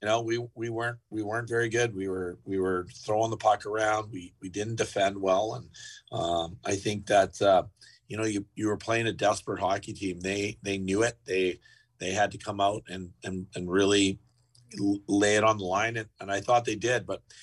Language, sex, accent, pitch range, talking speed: English, male, American, 100-115 Hz, 220 wpm